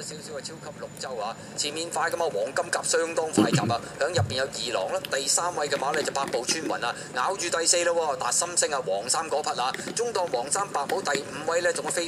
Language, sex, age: Chinese, male, 20-39